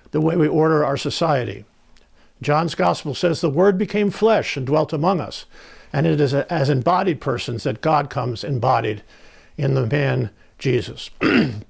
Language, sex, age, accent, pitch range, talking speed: English, male, 60-79, American, 130-165 Hz, 160 wpm